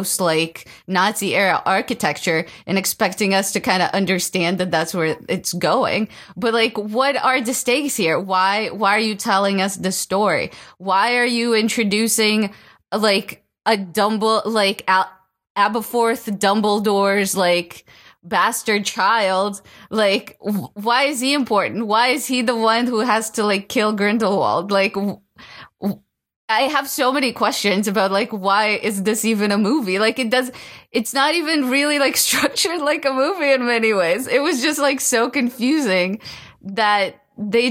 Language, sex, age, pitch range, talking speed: English, female, 20-39, 195-240 Hz, 160 wpm